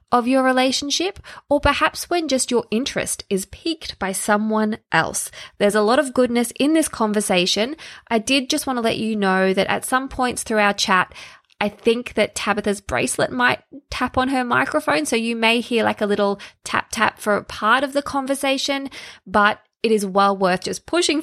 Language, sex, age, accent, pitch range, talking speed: English, female, 20-39, Australian, 200-265 Hz, 190 wpm